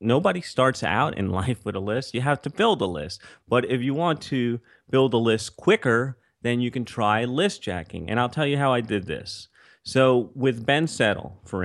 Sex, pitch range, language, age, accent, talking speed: male, 105-135 Hz, English, 30-49, American, 215 wpm